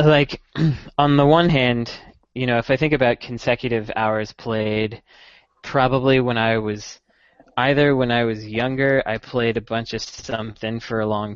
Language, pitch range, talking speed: English, 110-130 Hz, 170 wpm